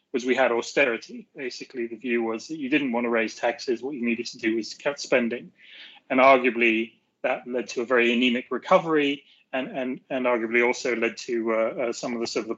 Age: 30-49